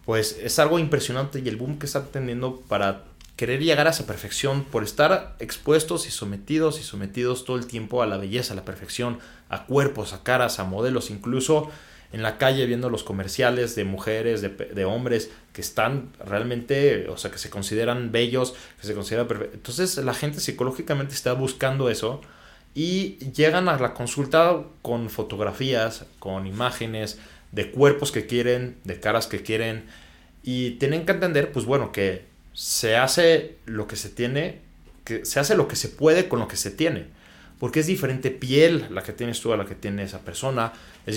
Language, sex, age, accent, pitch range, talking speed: Spanish, male, 30-49, Mexican, 105-135 Hz, 185 wpm